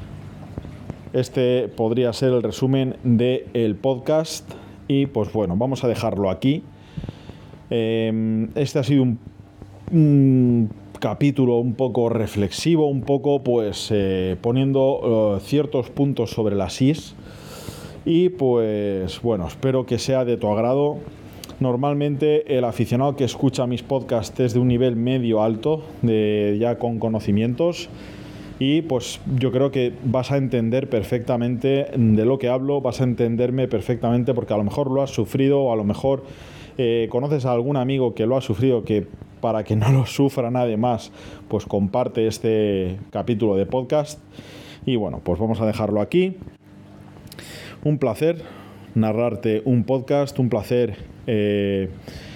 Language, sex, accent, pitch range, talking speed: Spanish, male, Spanish, 110-135 Hz, 145 wpm